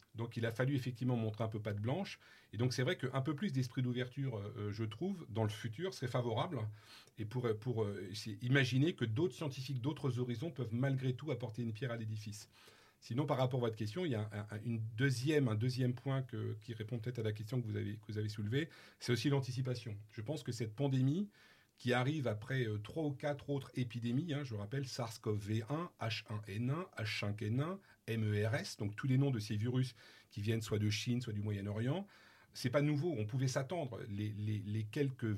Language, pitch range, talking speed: French, 110-130 Hz, 200 wpm